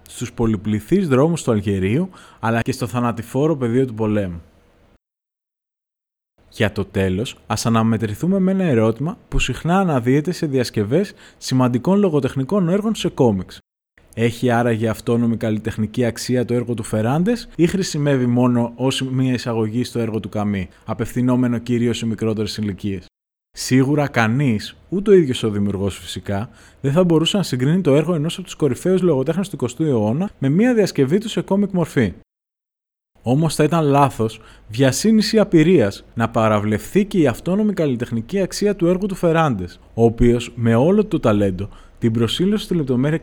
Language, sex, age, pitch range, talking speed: Greek, male, 20-39, 110-170 Hz, 155 wpm